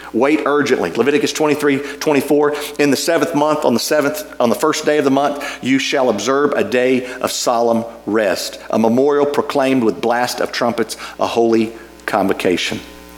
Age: 50-69